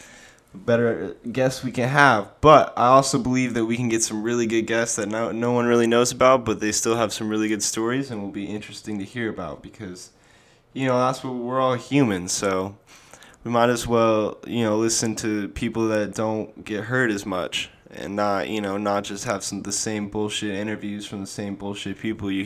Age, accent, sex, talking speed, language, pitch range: 20-39, American, male, 215 wpm, English, 105-120 Hz